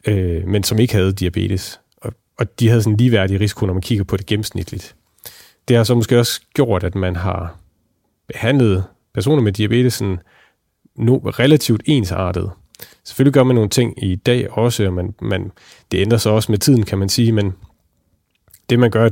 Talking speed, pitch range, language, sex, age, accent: 180 wpm, 95-115 Hz, Danish, male, 30-49, native